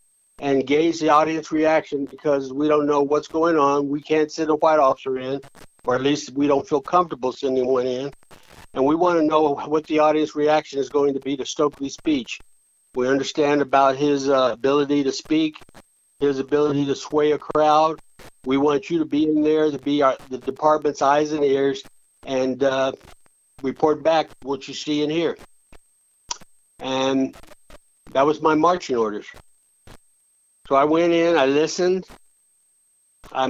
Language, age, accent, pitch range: English, 60-79, American, 140-160 Hz